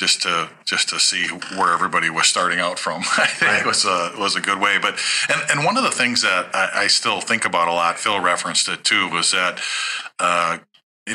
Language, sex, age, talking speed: English, male, 40-59, 230 wpm